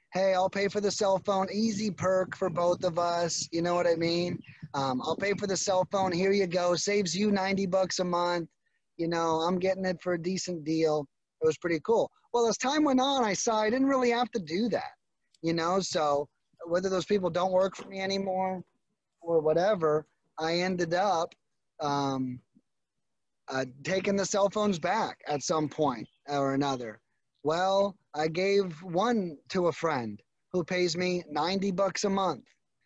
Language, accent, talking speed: English, American, 190 wpm